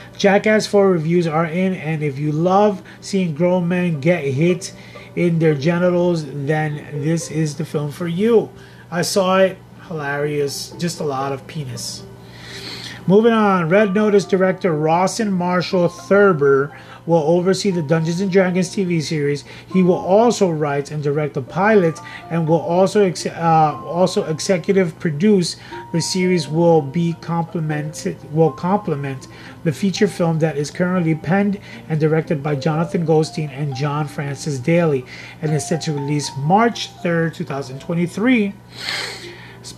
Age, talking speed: 30-49, 145 wpm